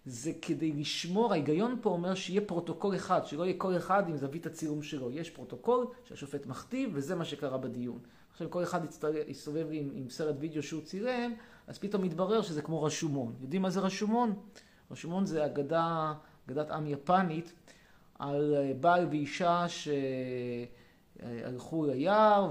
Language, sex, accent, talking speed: Hebrew, male, native, 150 wpm